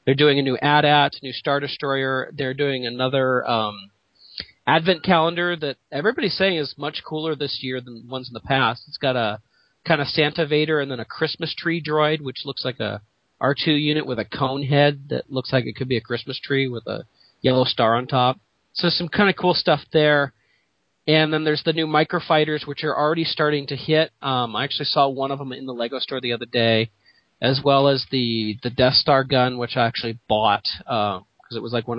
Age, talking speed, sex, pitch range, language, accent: 40-59, 220 wpm, male, 125-150 Hz, English, American